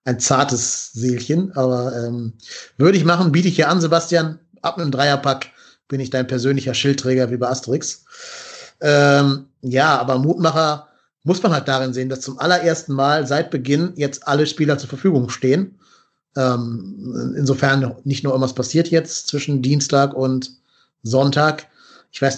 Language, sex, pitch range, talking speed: German, male, 130-160 Hz, 155 wpm